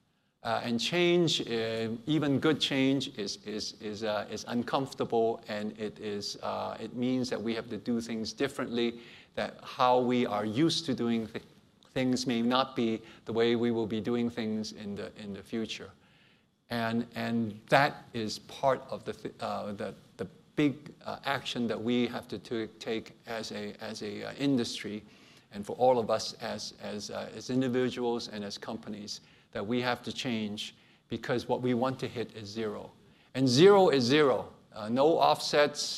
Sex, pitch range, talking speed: male, 110-130 Hz, 180 wpm